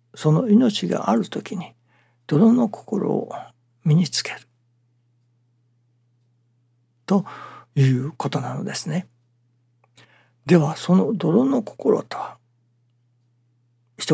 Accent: native